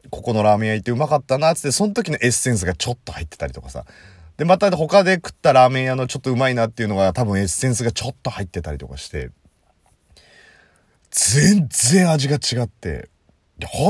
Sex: male